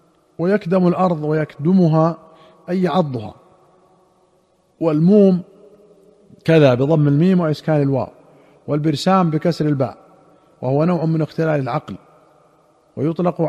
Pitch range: 150-170 Hz